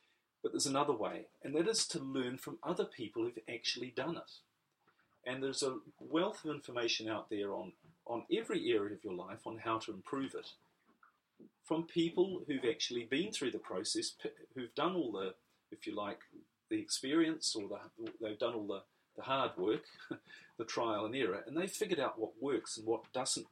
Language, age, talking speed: English, 40-59, 190 wpm